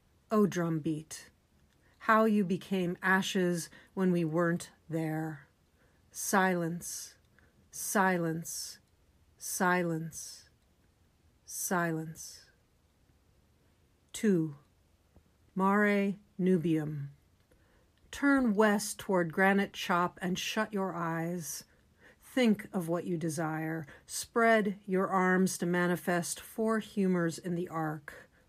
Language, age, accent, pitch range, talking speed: English, 50-69, American, 155-205 Hz, 85 wpm